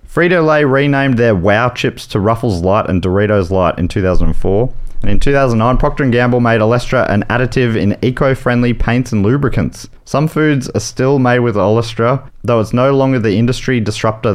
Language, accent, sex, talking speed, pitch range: English, Australian, male, 175 wpm, 95-135 Hz